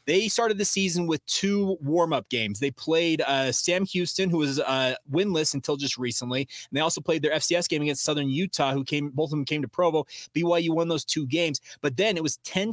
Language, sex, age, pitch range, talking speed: English, male, 20-39, 145-175 Hz, 225 wpm